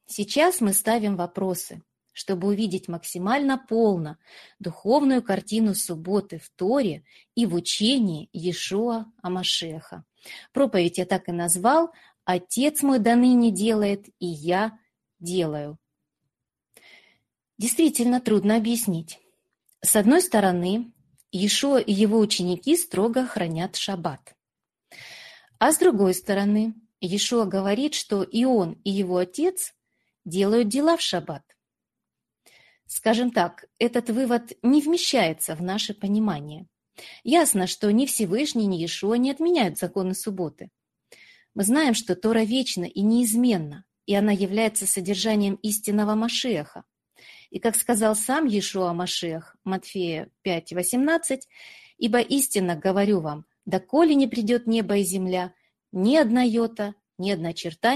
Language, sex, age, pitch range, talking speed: Russian, female, 30-49, 180-235 Hz, 120 wpm